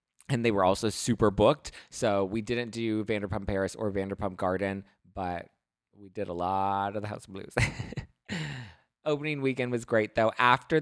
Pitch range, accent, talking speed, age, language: 105-135 Hz, American, 170 wpm, 20-39, English